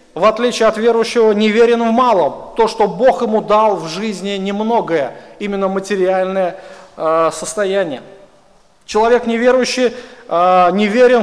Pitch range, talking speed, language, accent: 195-240 Hz, 130 wpm, Russian, native